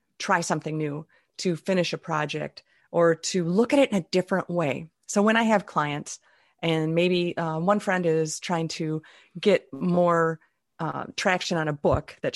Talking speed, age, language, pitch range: 180 wpm, 30-49, English, 155-195 Hz